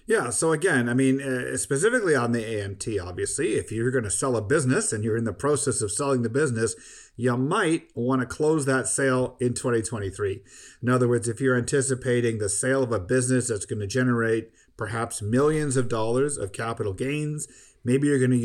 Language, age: English, 50-69